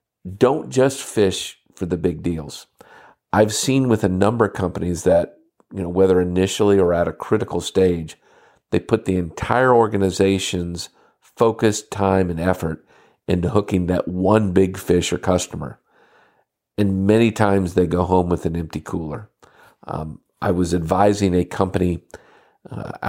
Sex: male